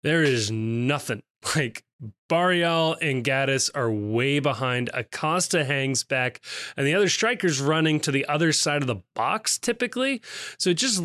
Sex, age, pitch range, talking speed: male, 20-39, 130-165 Hz, 160 wpm